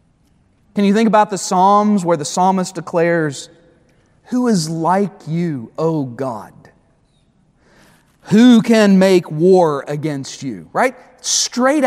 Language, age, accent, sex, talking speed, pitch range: English, 40-59, American, male, 120 wpm, 165-220 Hz